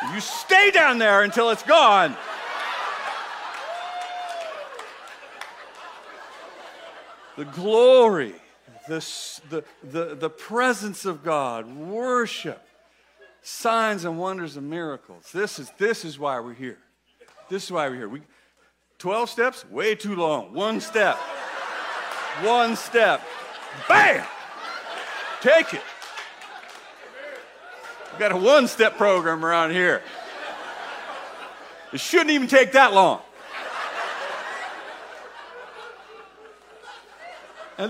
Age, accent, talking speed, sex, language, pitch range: 50-69, American, 95 wpm, male, English, 185-295 Hz